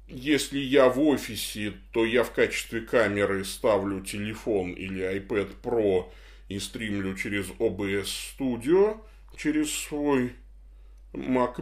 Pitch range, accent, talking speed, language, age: 95-125 Hz, native, 115 wpm, Russian, 20-39